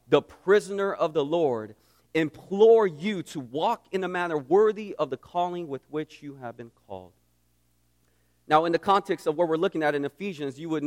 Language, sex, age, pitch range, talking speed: English, male, 40-59, 115-190 Hz, 195 wpm